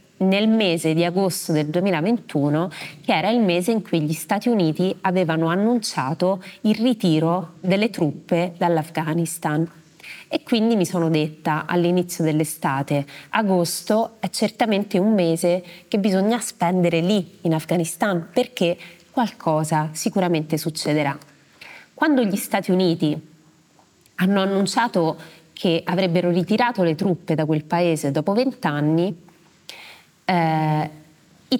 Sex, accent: female, native